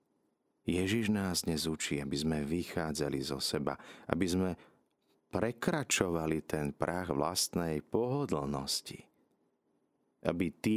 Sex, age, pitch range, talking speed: male, 40-59, 75-95 Hz, 95 wpm